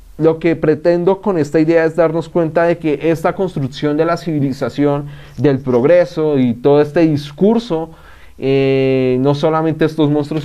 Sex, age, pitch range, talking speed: male, 30-49, 135-165 Hz, 155 wpm